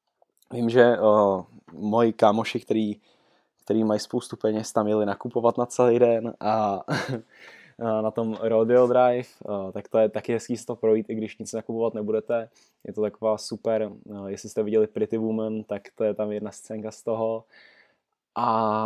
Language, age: Czech, 10-29